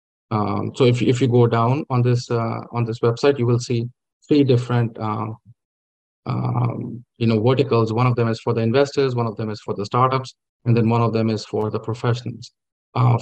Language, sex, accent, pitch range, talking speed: English, male, Indian, 115-125 Hz, 215 wpm